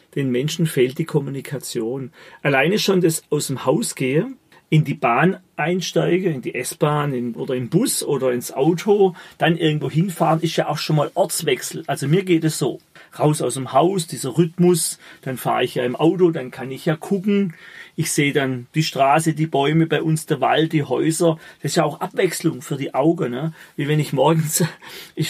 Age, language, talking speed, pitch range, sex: 40-59, German, 200 wpm, 140-165 Hz, male